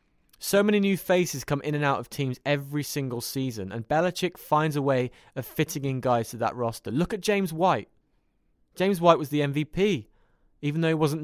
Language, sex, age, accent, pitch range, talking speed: English, male, 20-39, British, 125-170 Hz, 205 wpm